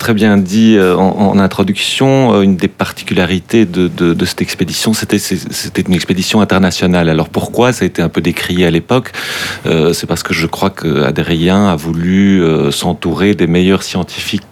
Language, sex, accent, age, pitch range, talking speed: French, male, French, 40-59, 85-105 Hz, 180 wpm